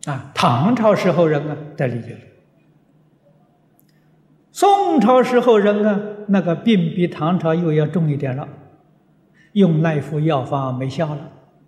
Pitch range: 150-185 Hz